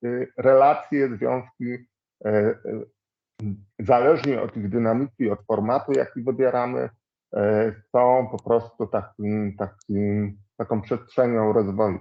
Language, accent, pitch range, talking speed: Polish, native, 110-145 Hz, 90 wpm